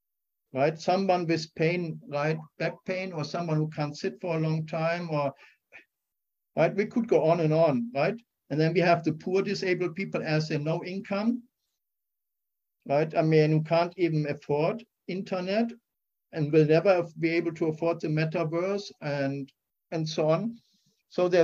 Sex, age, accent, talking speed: male, 60-79, German, 170 wpm